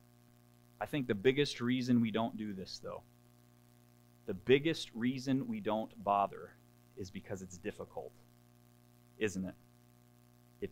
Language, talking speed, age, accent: English, 130 wpm, 30-49, American